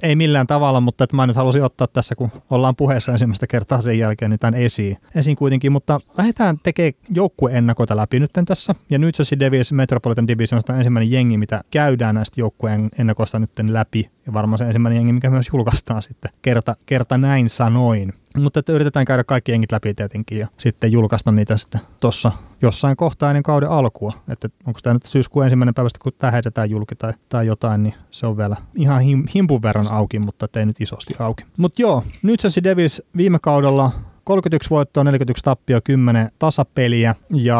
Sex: male